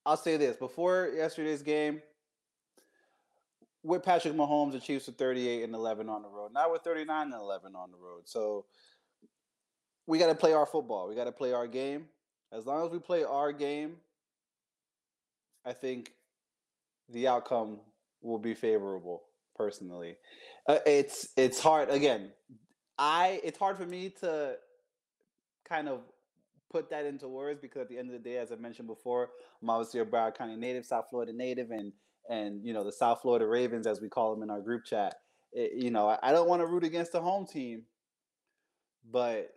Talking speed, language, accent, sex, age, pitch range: 180 wpm, English, American, male, 20-39, 115-165 Hz